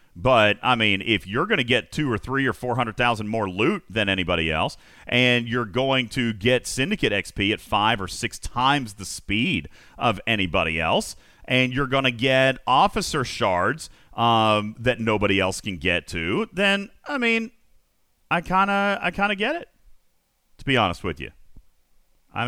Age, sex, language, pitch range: 40-59, male, English, 100-130 Hz